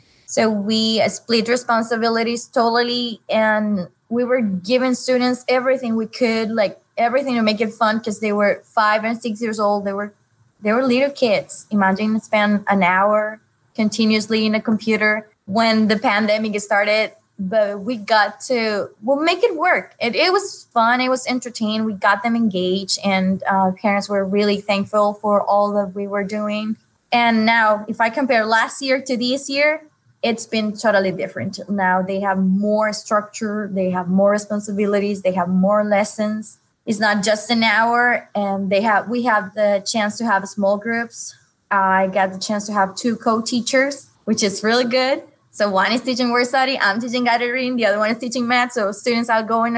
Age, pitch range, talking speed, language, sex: 20-39, 205-245 Hz, 180 wpm, English, female